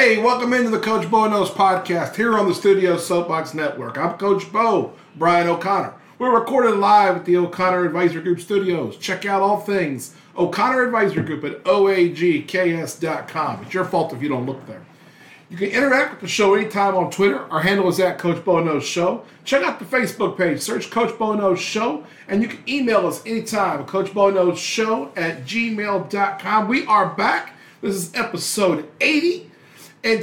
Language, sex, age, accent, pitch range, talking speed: English, male, 50-69, American, 170-220 Hz, 175 wpm